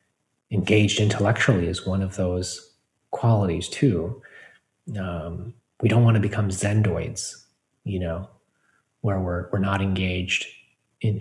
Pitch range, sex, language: 95-115 Hz, male, English